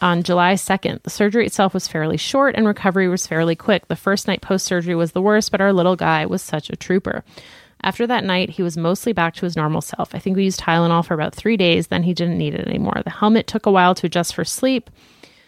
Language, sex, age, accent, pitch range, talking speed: English, female, 30-49, American, 170-210 Hz, 250 wpm